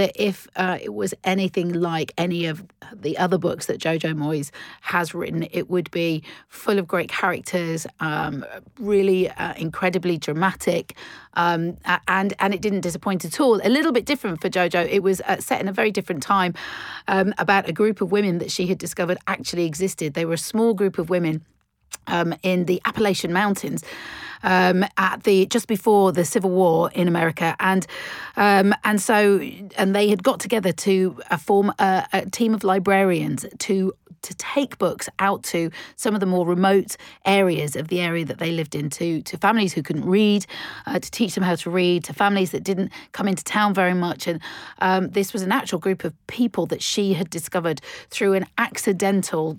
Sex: female